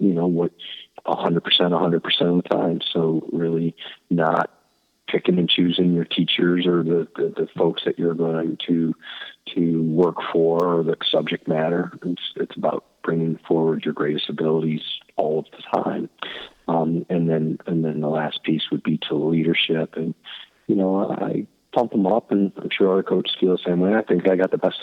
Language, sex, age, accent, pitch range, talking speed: English, male, 40-59, American, 80-90 Hz, 190 wpm